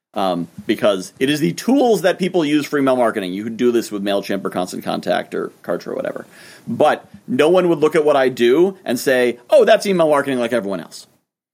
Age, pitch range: 30-49, 115-155 Hz